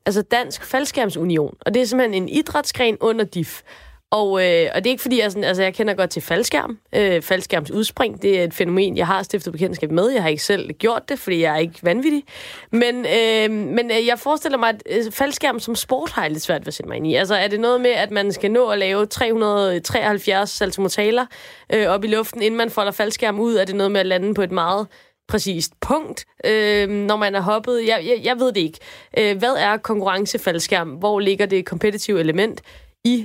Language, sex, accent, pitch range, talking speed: Danish, female, native, 200-255 Hz, 220 wpm